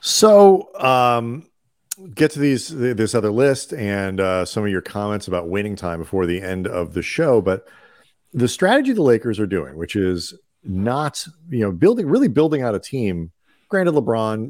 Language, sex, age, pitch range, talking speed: English, male, 40-59, 90-120 Hz, 180 wpm